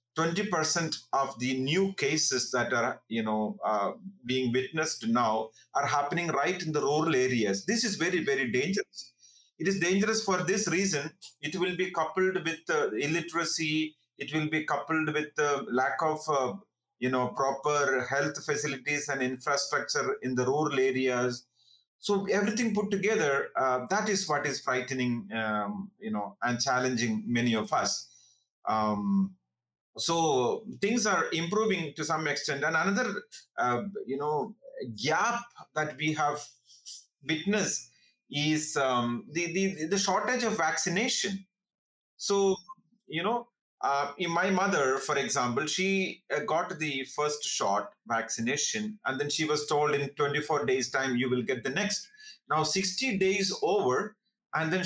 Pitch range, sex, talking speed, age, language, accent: 130-195 Hz, male, 140 wpm, 30-49, English, Indian